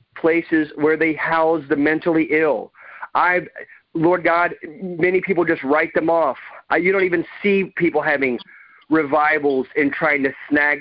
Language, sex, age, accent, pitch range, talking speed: English, male, 40-59, American, 135-160 Hz, 155 wpm